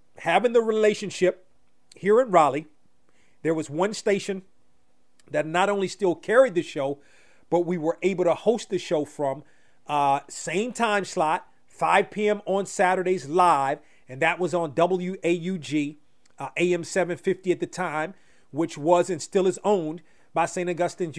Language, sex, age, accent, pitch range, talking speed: English, male, 40-59, American, 155-180 Hz, 165 wpm